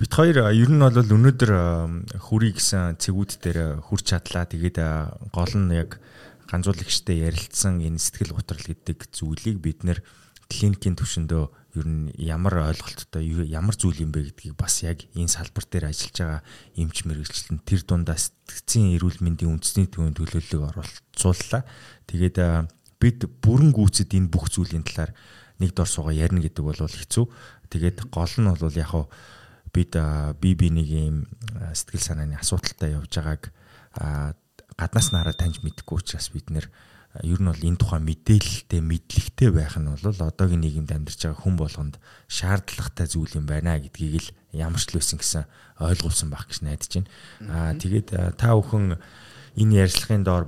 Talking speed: 110 wpm